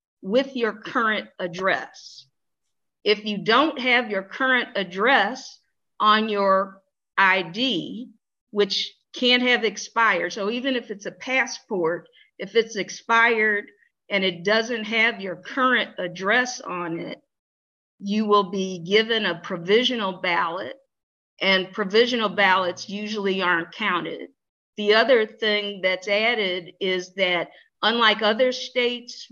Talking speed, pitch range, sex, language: 120 wpm, 190-230 Hz, female, English